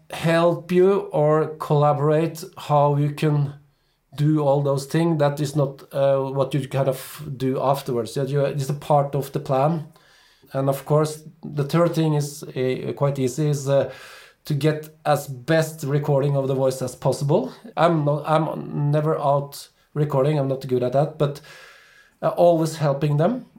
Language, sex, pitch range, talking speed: English, male, 130-150 Hz, 160 wpm